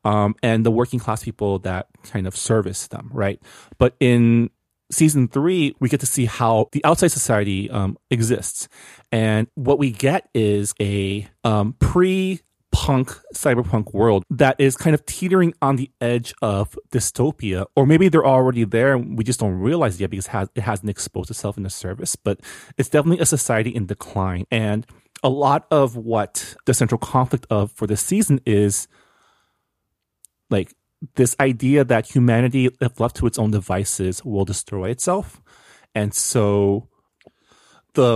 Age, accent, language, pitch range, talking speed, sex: 30-49, American, English, 105-135 Hz, 160 wpm, male